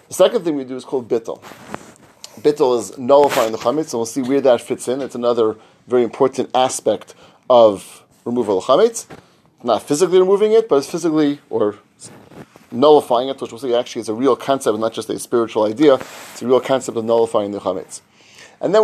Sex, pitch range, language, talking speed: male, 115-150 Hz, English, 200 wpm